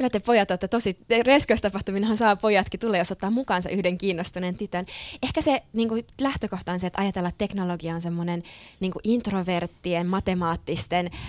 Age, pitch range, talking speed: 20-39, 175-220 Hz, 160 wpm